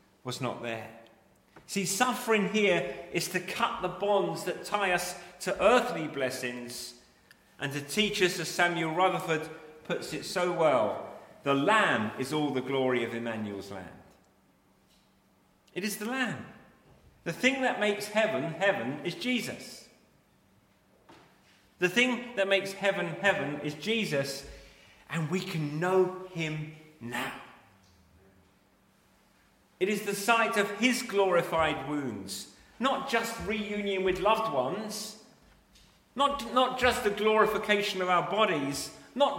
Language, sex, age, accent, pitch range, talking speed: English, male, 40-59, British, 155-220 Hz, 130 wpm